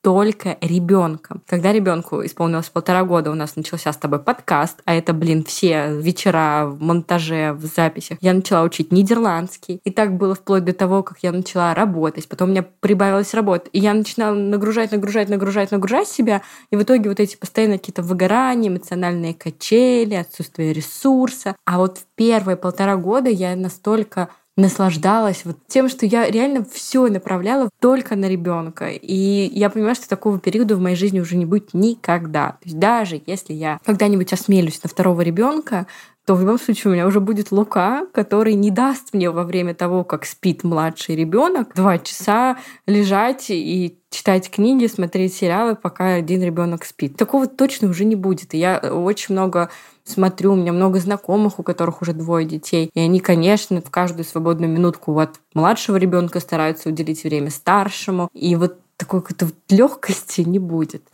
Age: 20-39